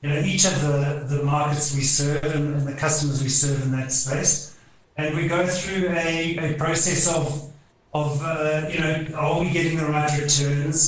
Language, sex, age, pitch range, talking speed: English, male, 40-59, 140-160 Hz, 195 wpm